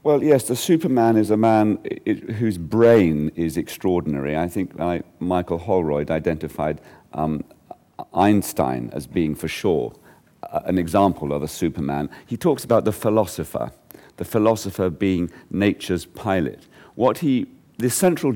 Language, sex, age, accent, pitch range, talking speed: English, male, 50-69, British, 85-115 Hz, 135 wpm